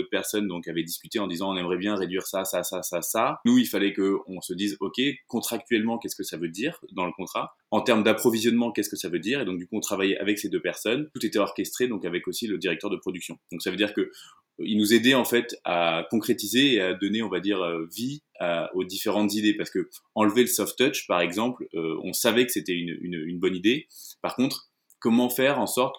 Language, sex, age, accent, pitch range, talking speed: French, male, 20-39, French, 95-120 Hz, 250 wpm